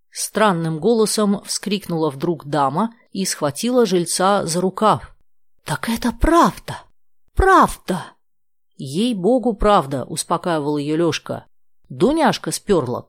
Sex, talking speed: female, 115 wpm